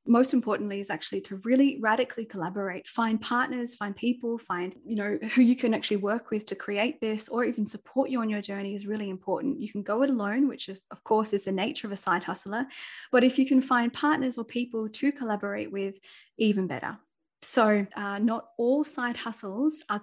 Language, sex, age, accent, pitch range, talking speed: English, female, 10-29, Australian, 205-260 Hz, 205 wpm